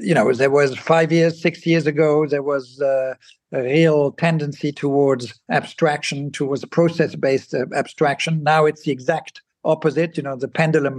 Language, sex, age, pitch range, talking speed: English, male, 60-79, 145-165 Hz, 160 wpm